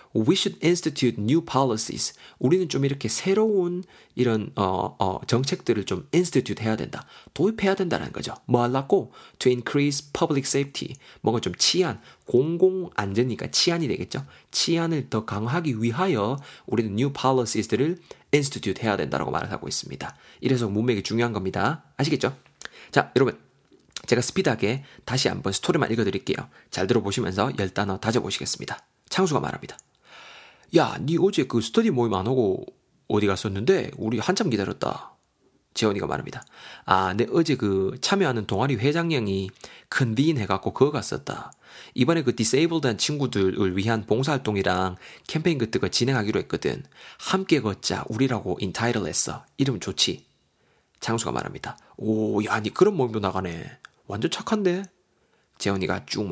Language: Korean